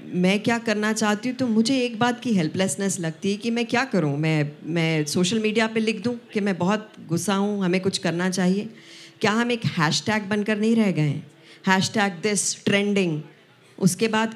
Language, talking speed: Hindi, 190 wpm